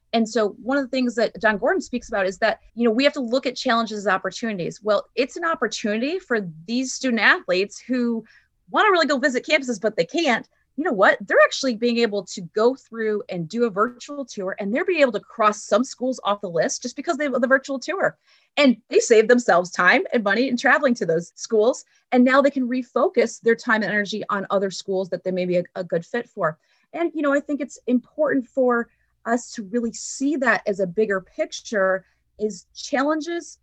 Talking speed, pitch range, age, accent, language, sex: 225 wpm, 205-265 Hz, 30-49, American, English, female